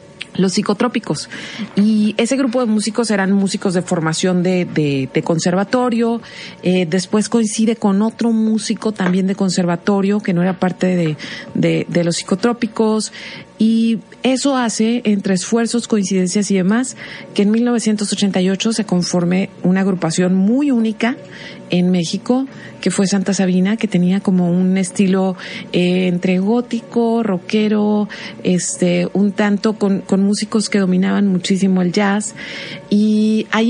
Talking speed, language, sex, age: 140 wpm, Spanish, female, 40-59